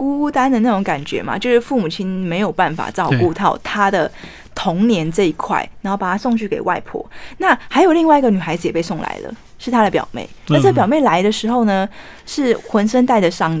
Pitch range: 185-245 Hz